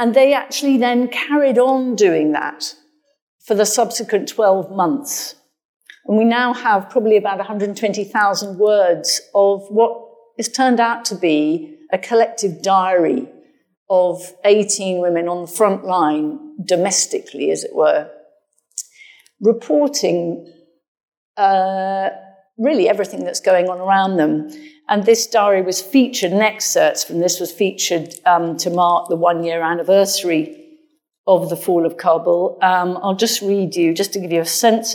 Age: 50-69